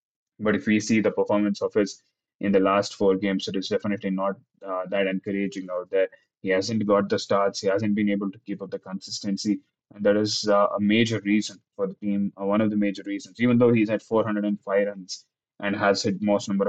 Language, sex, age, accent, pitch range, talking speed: English, male, 20-39, Indian, 100-105 Hz, 225 wpm